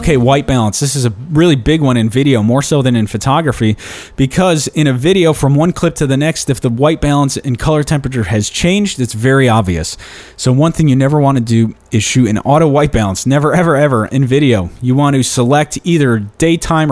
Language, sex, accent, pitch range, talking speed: English, male, American, 115-145 Hz, 225 wpm